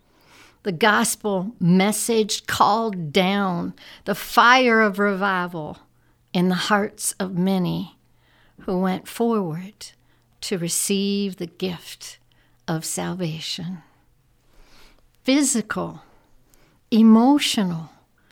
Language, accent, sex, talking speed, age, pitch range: English, American, female, 80 wpm, 60-79, 175-220 Hz